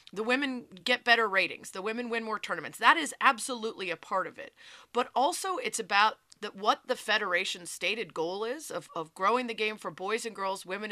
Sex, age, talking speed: female, 30-49, 210 wpm